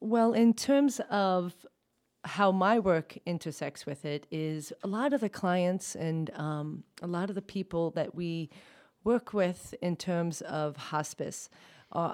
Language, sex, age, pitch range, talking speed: English, female, 30-49, 150-185 Hz, 160 wpm